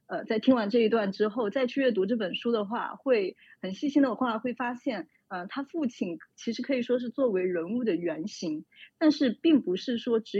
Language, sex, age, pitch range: Chinese, female, 30-49, 200-260 Hz